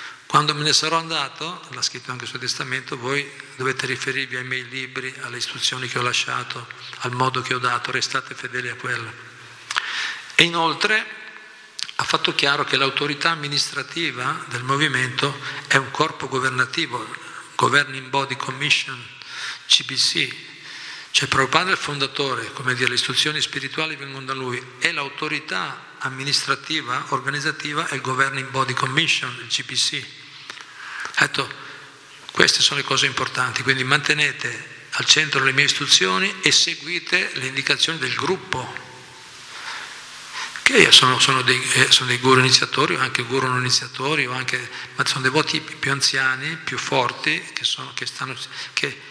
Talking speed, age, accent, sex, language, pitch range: 150 wpm, 50-69, native, male, Italian, 125-145 Hz